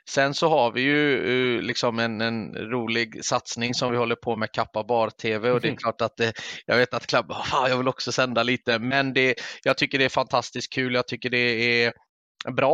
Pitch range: 115-135 Hz